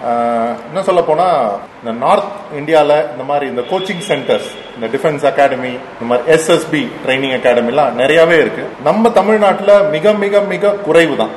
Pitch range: 130-190 Hz